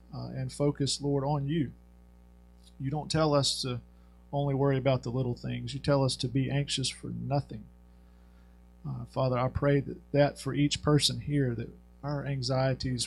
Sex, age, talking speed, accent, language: male, 40-59, 170 wpm, American, English